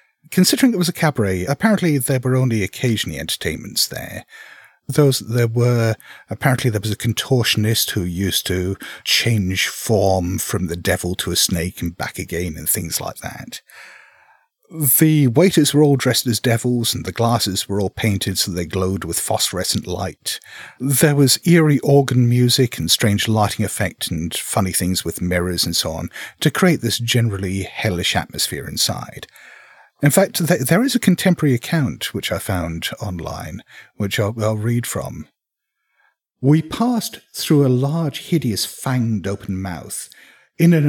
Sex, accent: male, British